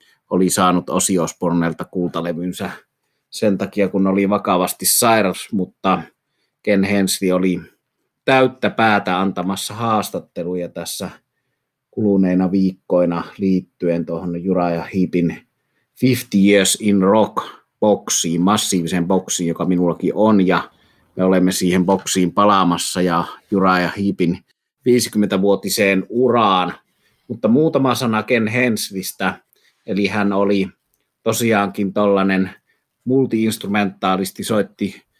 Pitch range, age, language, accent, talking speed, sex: 90-105 Hz, 30-49, Finnish, native, 100 wpm, male